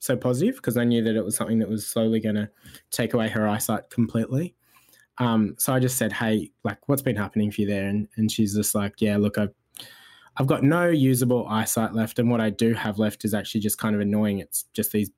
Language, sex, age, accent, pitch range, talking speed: English, male, 20-39, Australian, 105-125 Hz, 240 wpm